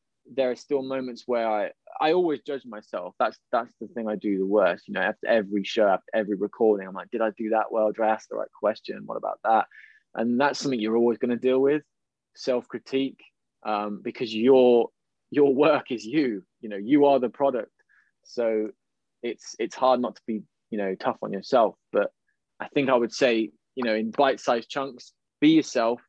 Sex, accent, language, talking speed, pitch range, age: male, British, English, 200 wpm, 110-135 Hz, 20-39